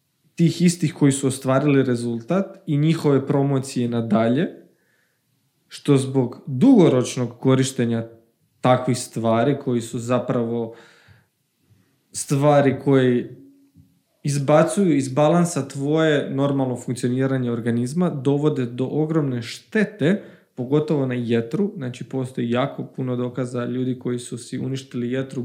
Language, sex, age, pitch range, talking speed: Croatian, male, 20-39, 125-145 Hz, 105 wpm